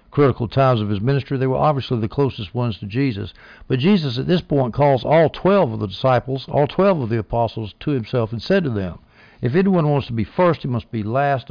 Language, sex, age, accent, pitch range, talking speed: English, male, 60-79, American, 110-140 Hz, 235 wpm